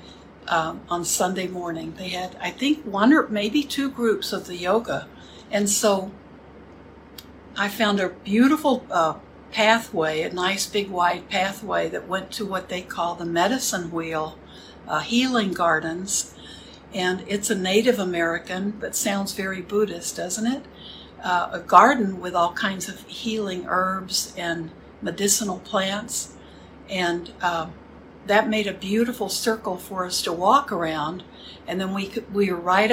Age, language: 60-79, English